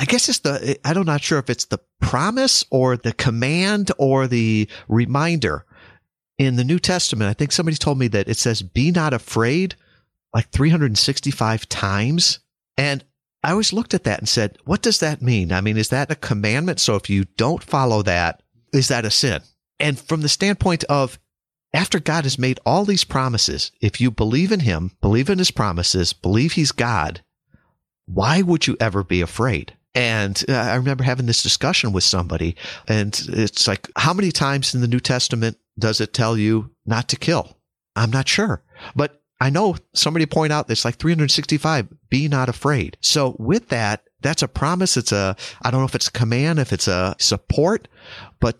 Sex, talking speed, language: male, 190 wpm, English